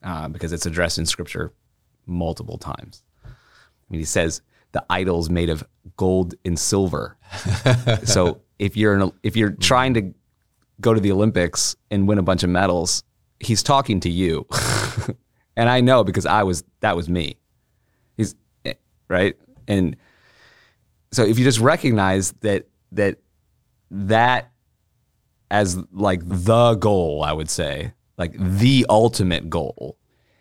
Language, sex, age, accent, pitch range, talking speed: English, male, 30-49, American, 90-115 Hz, 140 wpm